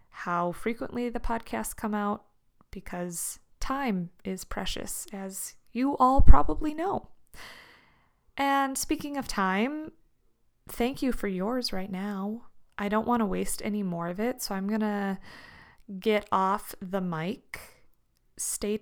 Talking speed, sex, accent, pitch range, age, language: 135 wpm, female, American, 185-225 Hz, 20-39, English